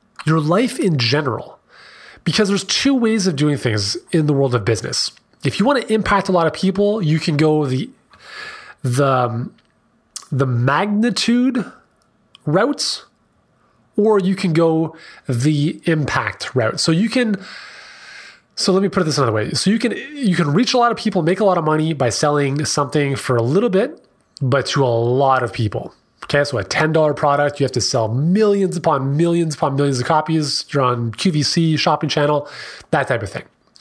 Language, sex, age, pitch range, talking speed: English, male, 30-49, 135-185 Hz, 185 wpm